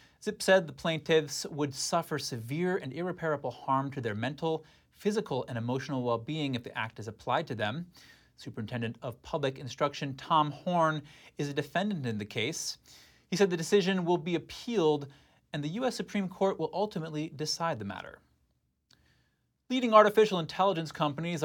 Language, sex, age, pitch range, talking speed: English, male, 30-49, 130-175 Hz, 160 wpm